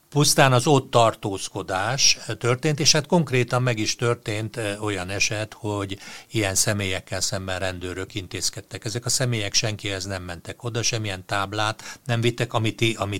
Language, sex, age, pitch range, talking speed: Hungarian, male, 60-79, 95-115 Hz, 140 wpm